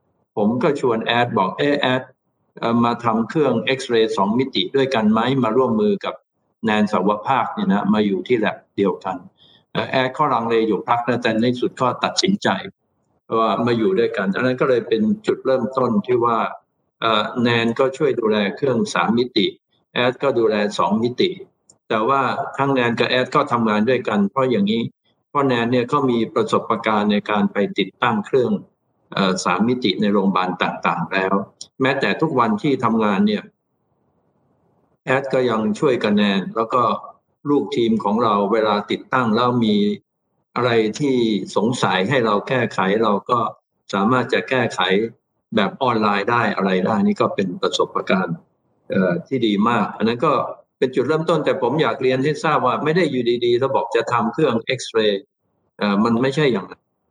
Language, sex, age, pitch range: Thai, male, 60-79, 110-140 Hz